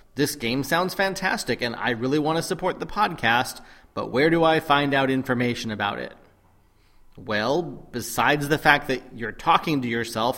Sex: male